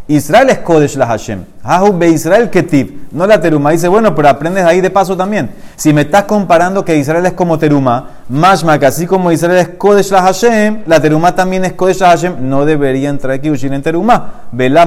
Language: Spanish